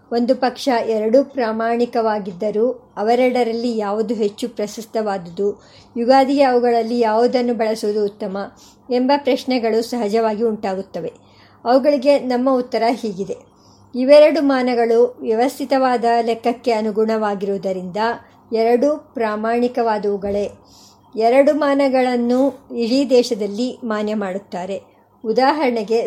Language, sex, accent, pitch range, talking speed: Kannada, male, native, 220-255 Hz, 80 wpm